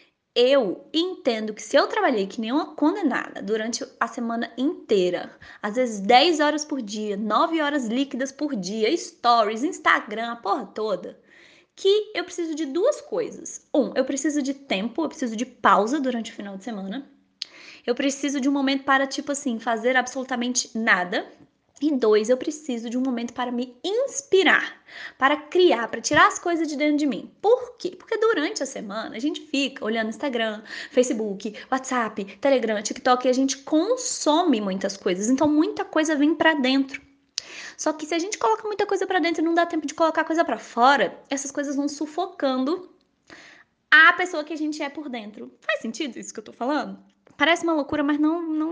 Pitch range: 250-320 Hz